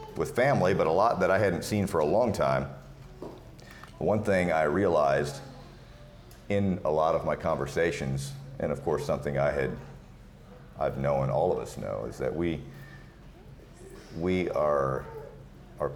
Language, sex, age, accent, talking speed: English, male, 40-59, American, 155 wpm